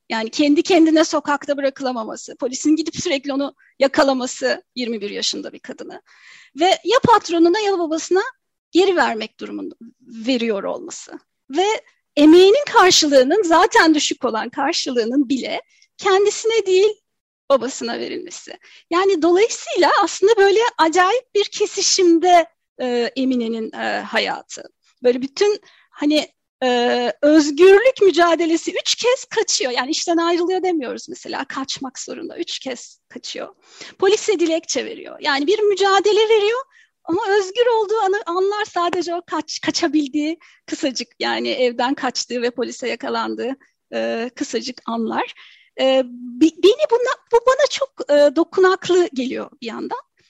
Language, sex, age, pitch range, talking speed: Turkish, female, 40-59, 270-395 Hz, 125 wpm